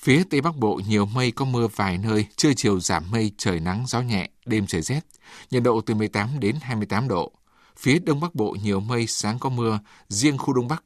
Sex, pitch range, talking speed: male, 105-130 Hz, 225 wpm